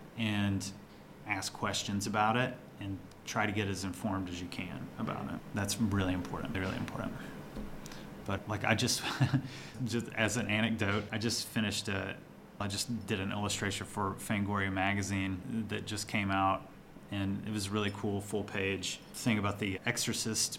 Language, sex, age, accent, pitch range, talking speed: English, male, 30-49, American, 100-125 Hz, 170 wpm